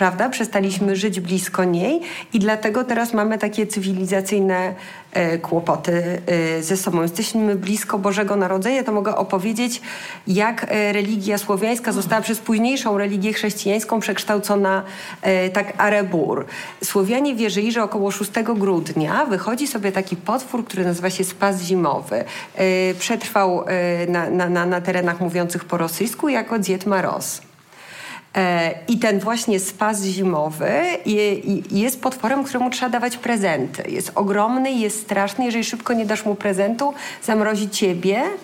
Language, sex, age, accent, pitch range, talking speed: Polish, female, 40-59, native, 185-220 Hz, 125 wpm